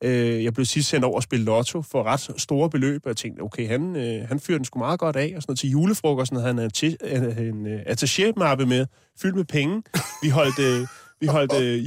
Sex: male